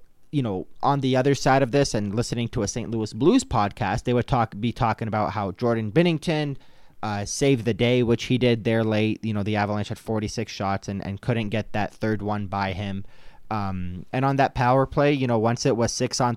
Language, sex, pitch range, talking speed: English, male, 100-125 Hz, 230 wpm